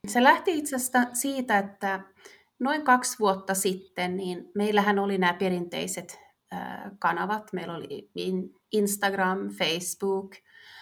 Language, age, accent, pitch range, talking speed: Finnish, 30-49, native, 185-230 Hz, 105 wpm